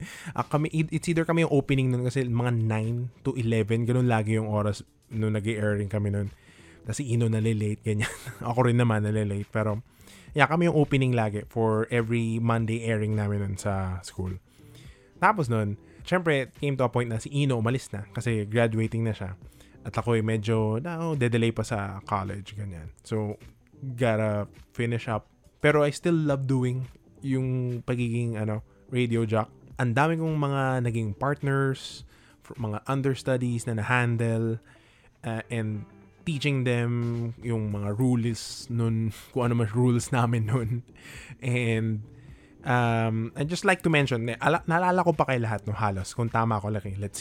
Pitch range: 110-130 Hz